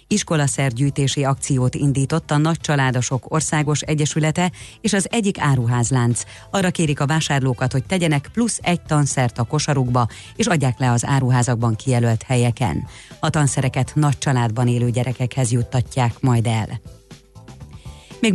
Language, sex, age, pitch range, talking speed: Hungarian, female, 30-49, 120-160 Hz, 135 wpm